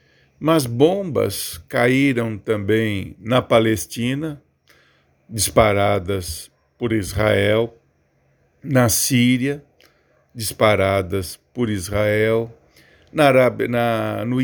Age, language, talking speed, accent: 50-69, Portuguese, 60 wpm, Brazilian